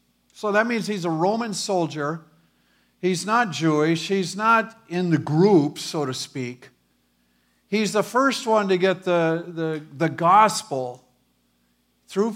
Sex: male